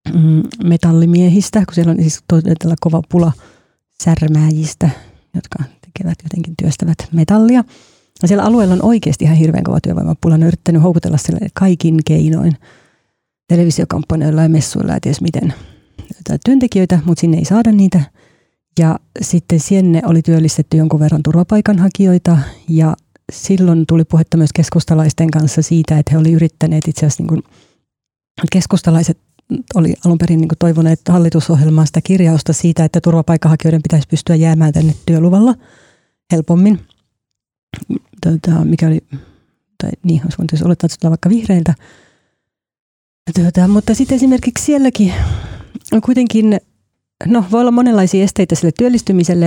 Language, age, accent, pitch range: Finnish, 30-49, native, 160-190 Hz